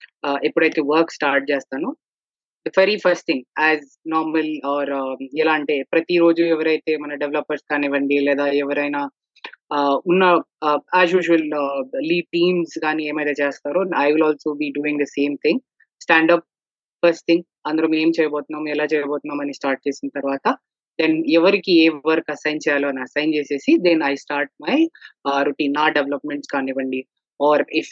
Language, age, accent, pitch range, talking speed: Telugu, 20-39, native, 140-160 Hz, 140 wpm